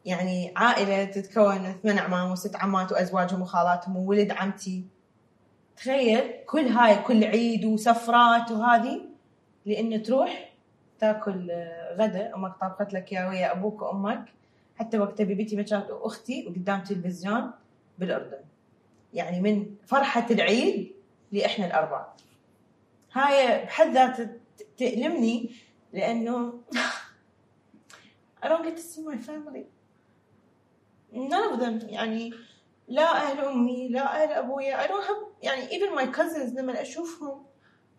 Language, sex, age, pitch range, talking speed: English, female, 20-39, 210-310 Hz, 105 wpm